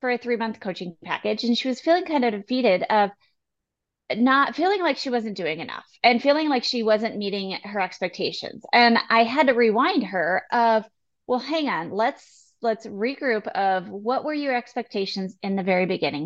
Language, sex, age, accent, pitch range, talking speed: English, female, 30-49, American, 205-260 Hz, 190 wpm